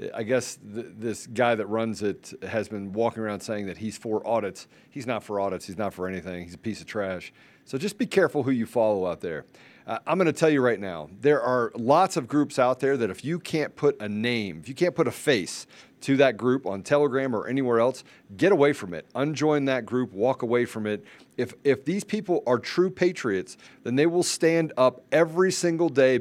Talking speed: 230 wpm